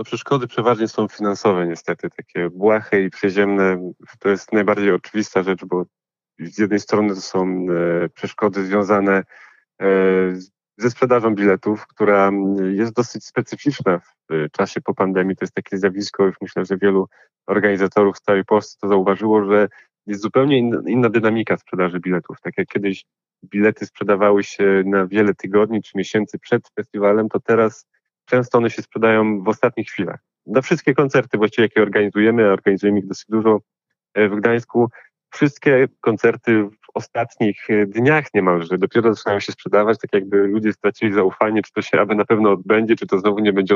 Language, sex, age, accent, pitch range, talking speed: Polish, male, 30-49, native, 100-115 Hz, 160 wpm